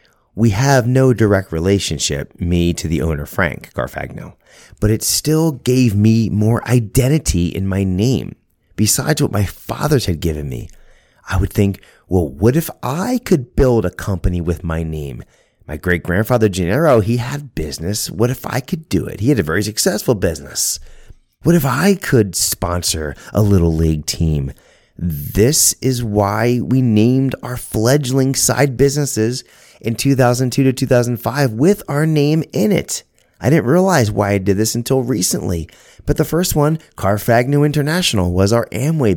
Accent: American